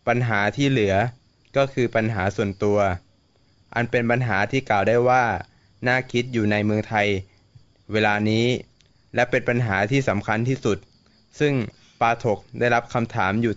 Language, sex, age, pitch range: Thai, male, 20-39, 110-130 Hz